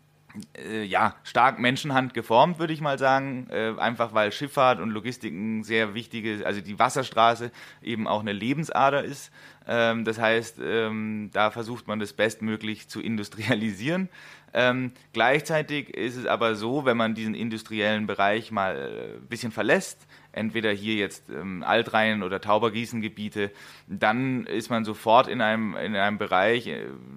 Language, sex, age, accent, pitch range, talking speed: German, male, 30-49, German, 105-120 Hz, 135 wpm